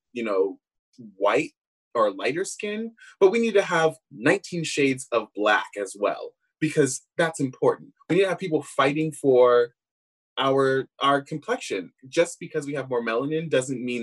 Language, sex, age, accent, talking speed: English, male, 20-39, American, 165 wpm